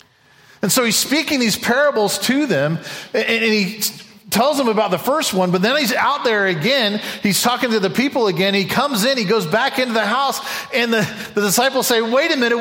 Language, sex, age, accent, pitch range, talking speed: English, male, 40-59, American, 165-245 Hz, 215 wpm